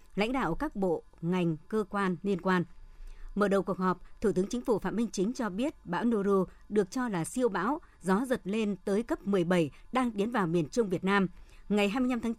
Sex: male